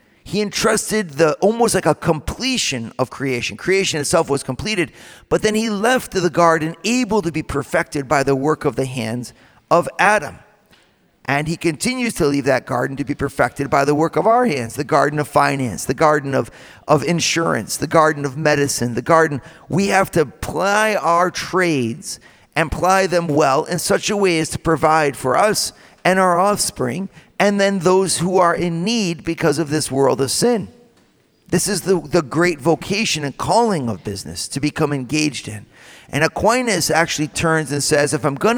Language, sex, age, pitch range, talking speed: English, male, 50-69, 140-185 Hz, 185 wpm